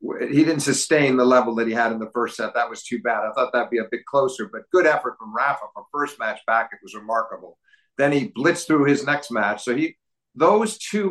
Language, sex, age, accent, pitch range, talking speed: English, male, 50-69, American, 115-145 Hz, 250 wpm